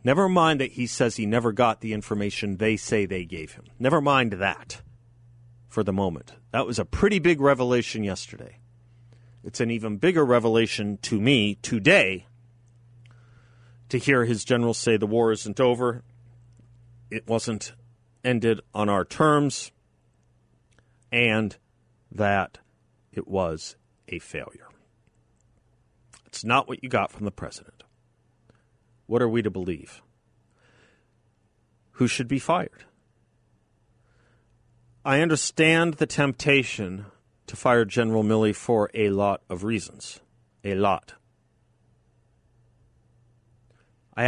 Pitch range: 105-120 Hz